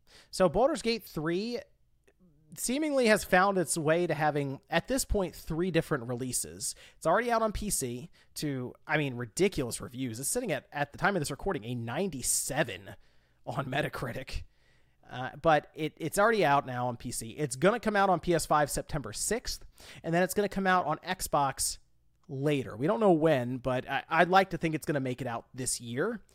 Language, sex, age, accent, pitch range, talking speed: English, male, 30-49, American, 130-185 Hz, 195 wpm